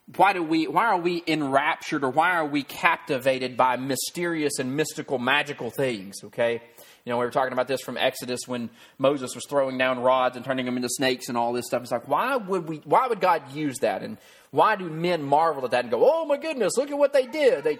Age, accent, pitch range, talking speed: 30-49, American, 135-180 Hz, 240 wpm